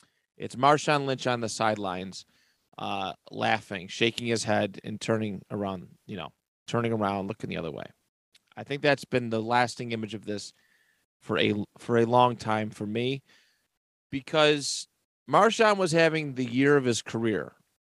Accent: American